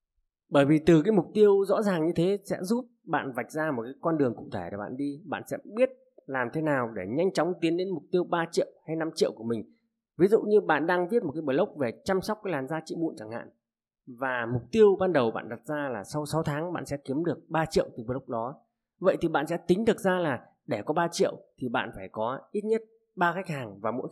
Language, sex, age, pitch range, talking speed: Vietnamese, male, 20-39, 130-185 Hz, 265 wpm